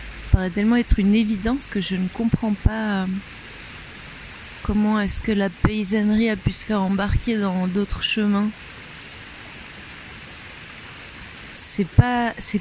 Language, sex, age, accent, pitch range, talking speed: French, female, 30-49, French, 180-220 Hz, 120 wpm